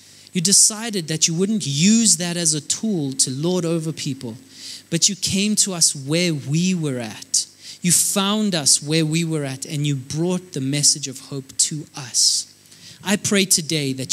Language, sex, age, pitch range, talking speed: English, male, 20-39, 135-180 Hz, 185 wpm